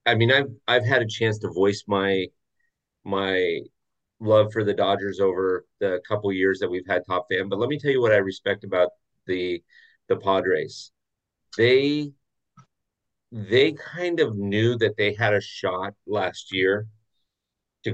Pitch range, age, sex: 100-115 Hz, 30-49, male